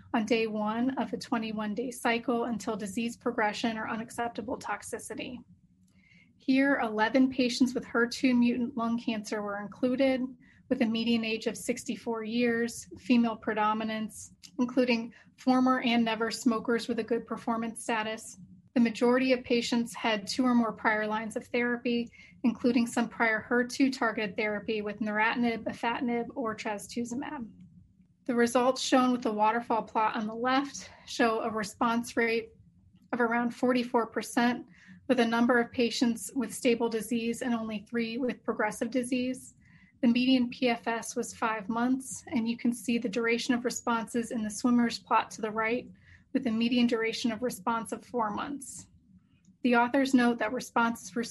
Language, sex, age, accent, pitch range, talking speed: English, female, 30-49, American, 225-250 Hz, 155 wpm